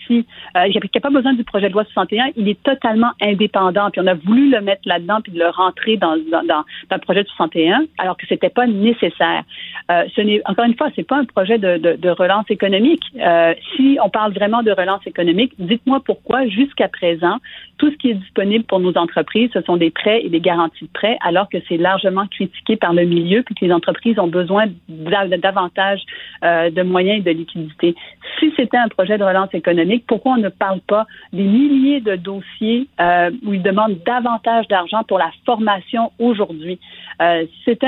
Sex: female